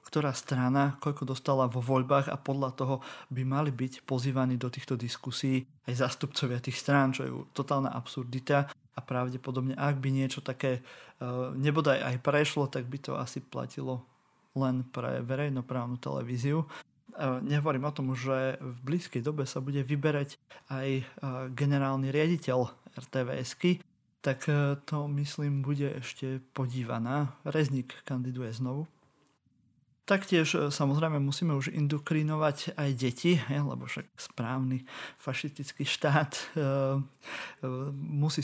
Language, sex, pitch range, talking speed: Slovak, male, 130-145 Hz, 130 wpm